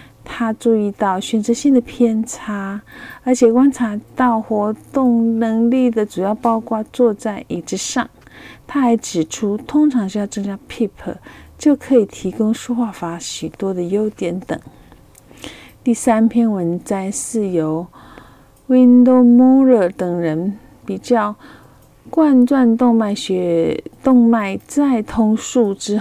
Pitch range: 195-245 Hz